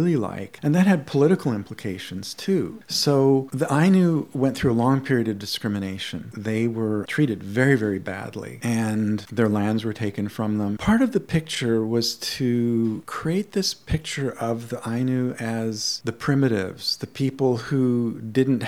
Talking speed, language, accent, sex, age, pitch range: 160 wpm, English, American, male, 50-69, 105-135 Hz